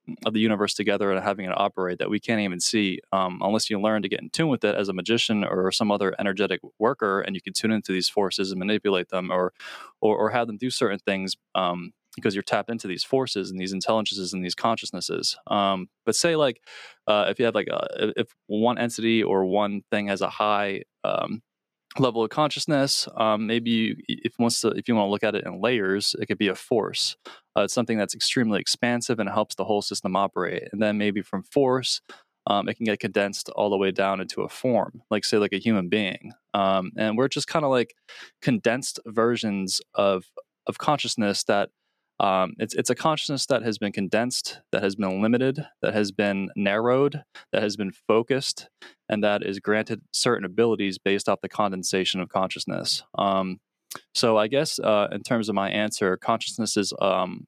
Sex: male